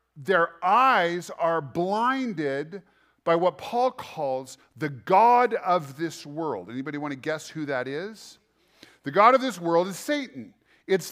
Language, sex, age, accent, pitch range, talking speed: English, male, 40-59, American, 145-200 Hz, 150 wpm